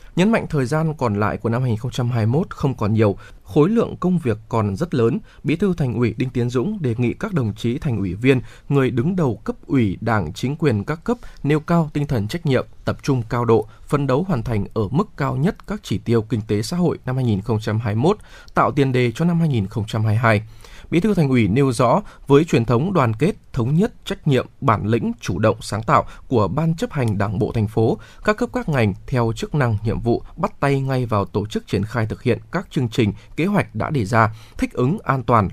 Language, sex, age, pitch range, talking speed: Vietnamese, male, 20-39, 110-155 Hz, 230 wpm